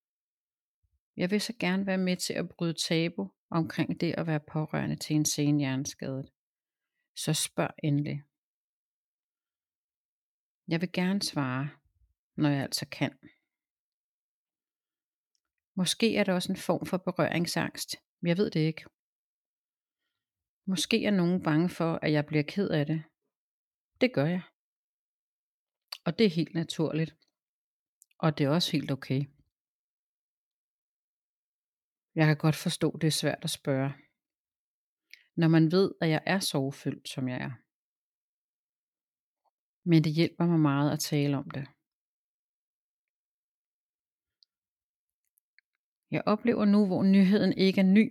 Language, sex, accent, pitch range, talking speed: Danish, female, native, 150-185 Hz, 130 wpm